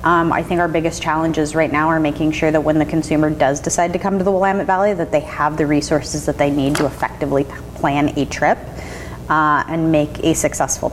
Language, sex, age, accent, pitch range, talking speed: English, female, 30-49, American, 150-190 Hz, 225 wpm